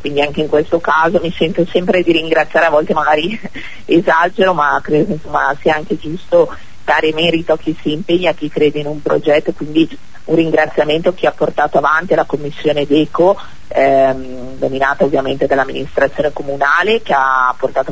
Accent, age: native, 40-59